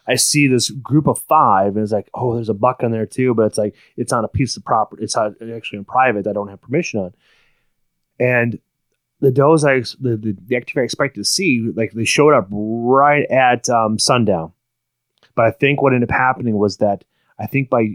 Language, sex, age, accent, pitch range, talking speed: English, male, 30-49, American, 110-130 Hz, 225 wpm